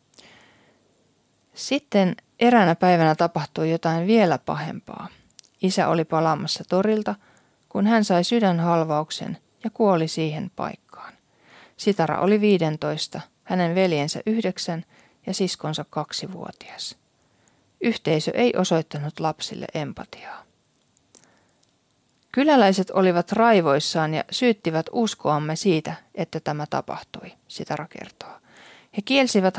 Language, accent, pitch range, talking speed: Finnish, native, 160-200 Hz, 95 wpm